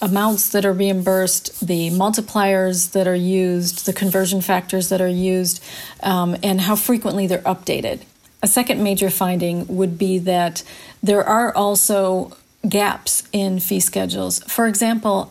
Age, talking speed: 40-59, 145 wpm